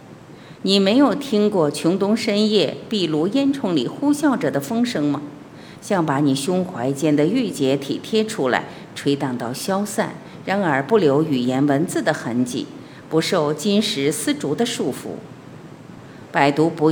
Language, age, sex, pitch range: Chinese, 50-69, female, 140-215 Hz